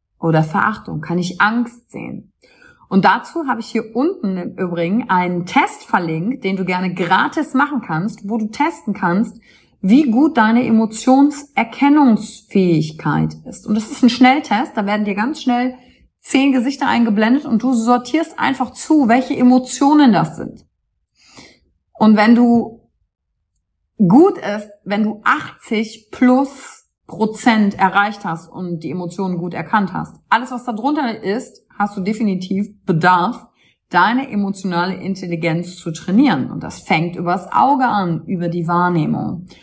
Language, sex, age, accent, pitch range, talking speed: German, female, 30-49, German, 180-245 Hz, 145 wpm